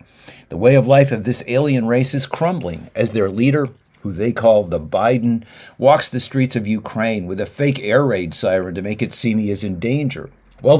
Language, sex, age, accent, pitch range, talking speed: French, male, 50-69, American, 110-135 Hz, 210 wpm